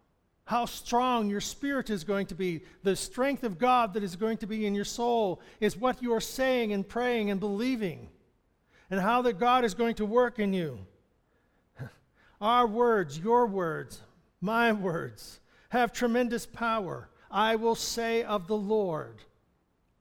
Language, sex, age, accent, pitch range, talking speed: English, male, 60-79, American, 185-240 Hz, 160 wpm